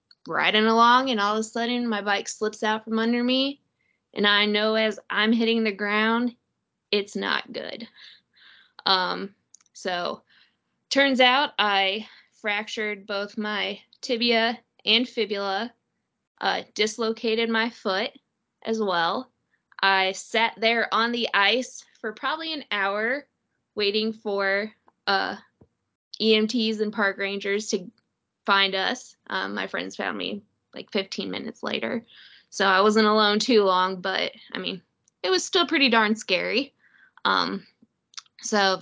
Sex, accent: female, American